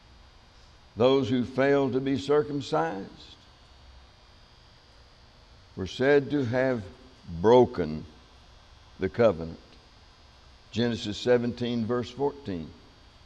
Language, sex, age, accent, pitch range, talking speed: English, male, 60-79, American, 95-140 Hz, 75 wpm